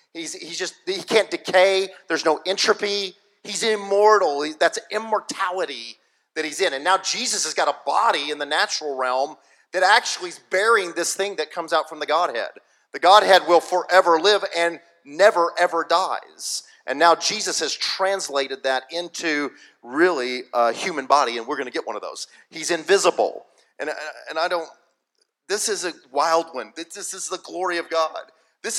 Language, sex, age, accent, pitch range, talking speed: English, male, 40-59, American, 165-220 Hz, 180 wpm